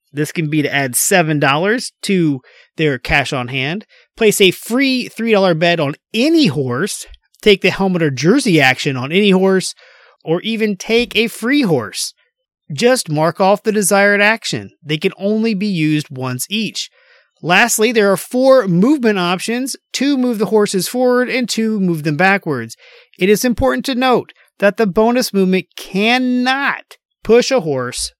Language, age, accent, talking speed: English, 30-49, American, 160 wpm